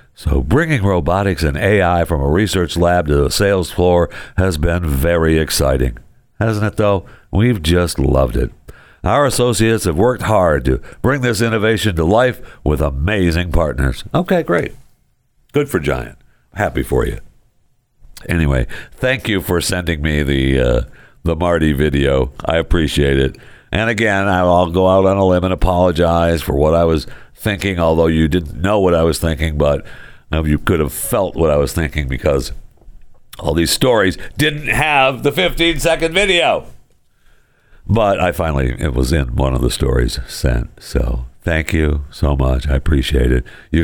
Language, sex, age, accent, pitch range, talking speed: English, male, 60-79, American, 75-105 Hz, 165 wpm